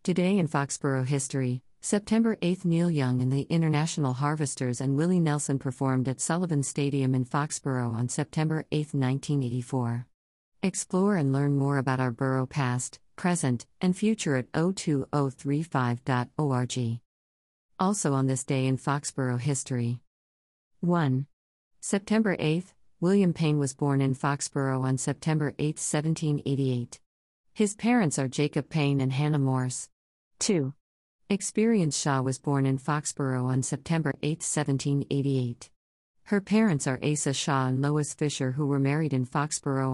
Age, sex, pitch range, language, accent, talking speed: 50-69, female, 130-155 Hz, English, American, 140 wpm